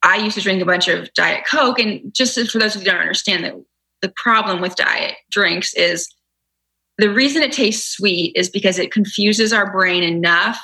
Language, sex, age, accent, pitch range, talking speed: English, female, 20-39, American, 180-215 Hz, 195 wpm